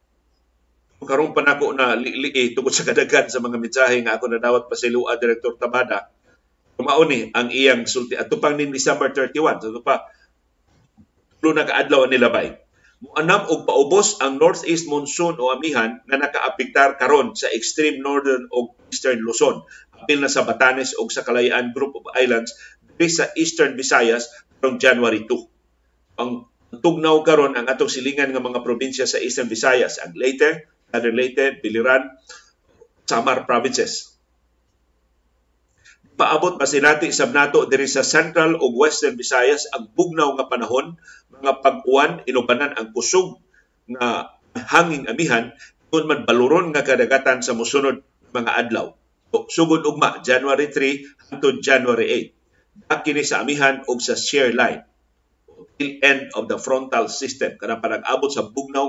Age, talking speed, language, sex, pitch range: 50-69, 155 wpm, Filipino, male, 120-150 Hz